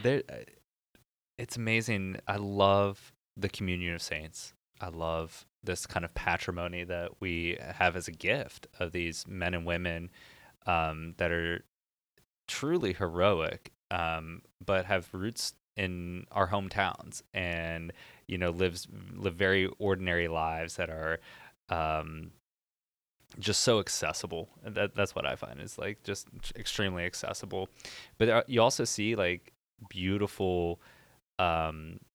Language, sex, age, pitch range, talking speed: English, male, 20-39, 85-95 Hz, 130 wpm